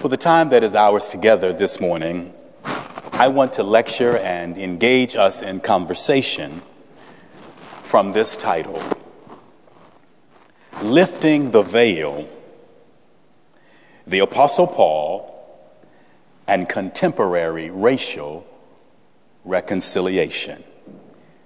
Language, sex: English, male